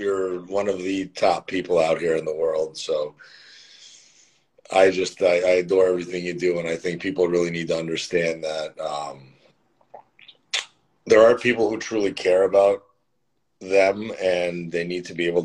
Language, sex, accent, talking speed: English, male, American, 170 wpm